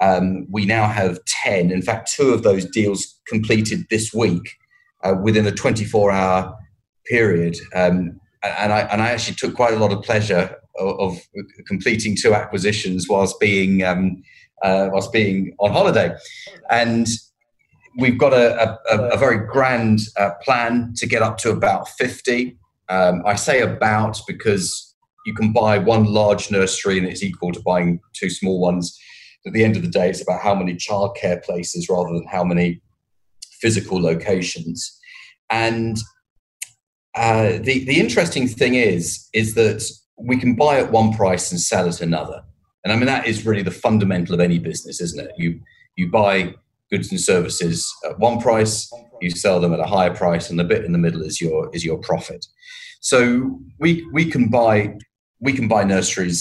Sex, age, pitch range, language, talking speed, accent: male, 30-49, 90-115 Hz, English, 175 wpm, British